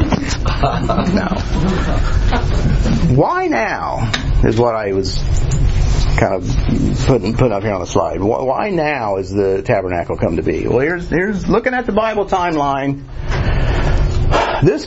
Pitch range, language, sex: 105-155 Hz, English, male